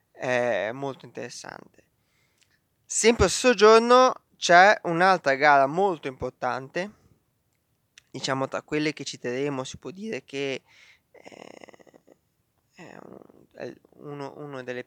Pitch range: 135-175 Hz